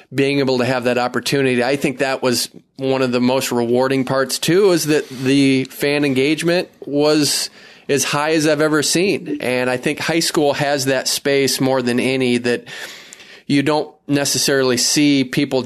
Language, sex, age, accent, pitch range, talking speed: English, male, 20-39, American, 120-145 Hz, 175 wpm